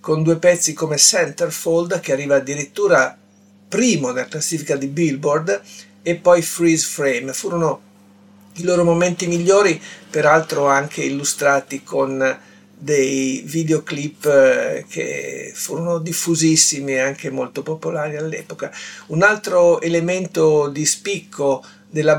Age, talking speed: 50-69, 115 wpm